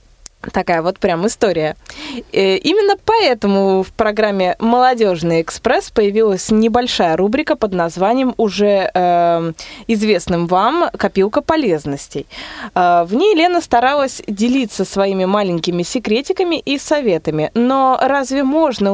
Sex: female